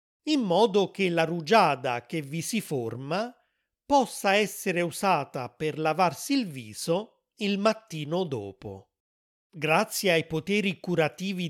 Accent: native